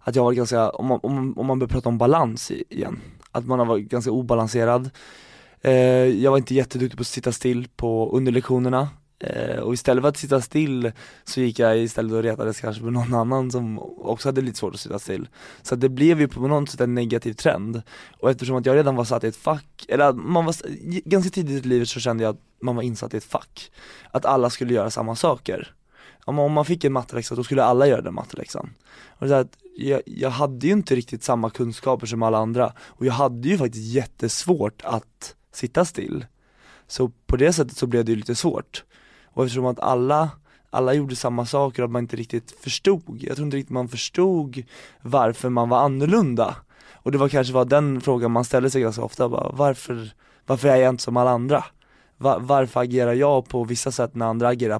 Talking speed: 205 wpm